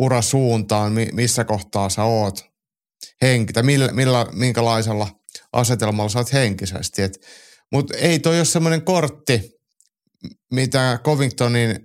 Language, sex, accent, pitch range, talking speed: Finnish, male, native, 105-130 Hz, 110 wpm